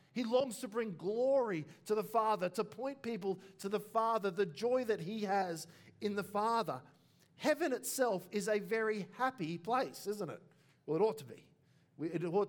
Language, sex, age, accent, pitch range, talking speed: English, male, 50-69, Australian, 145-190 Hz, 185 wpm